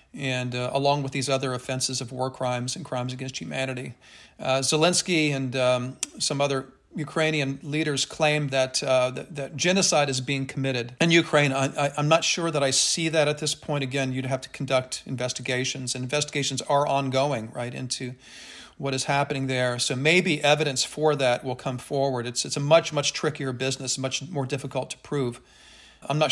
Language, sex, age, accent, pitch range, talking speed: English, male, 40-59, American, 130-150 Hz, 190 wpm